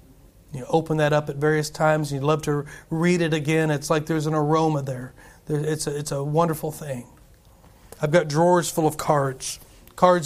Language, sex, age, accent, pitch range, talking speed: English, male, 40-59, American, 130-165 Hz, 195 wpm